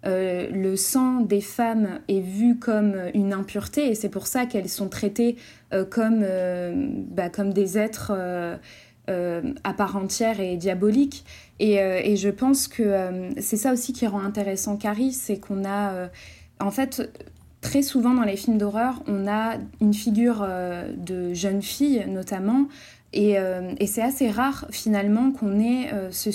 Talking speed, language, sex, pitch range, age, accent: 175 wpm, French, female, 195-235 Hz, 20-39, French